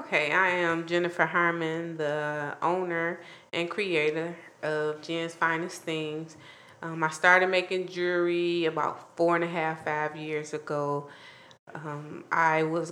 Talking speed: 135 wpm